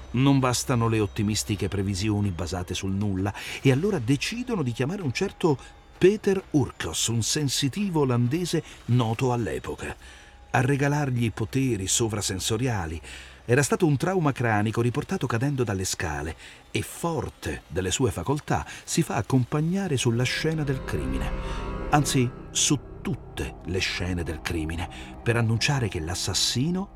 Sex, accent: male, native